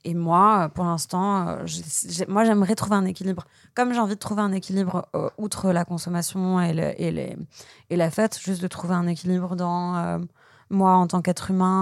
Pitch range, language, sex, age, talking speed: 170-195 Hz, French, female, 20-39, 215 wpm